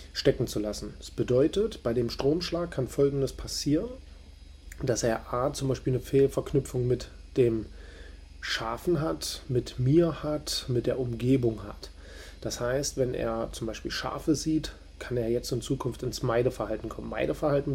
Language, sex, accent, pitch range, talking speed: German, male, German, 120-140 Hz, 155 wpm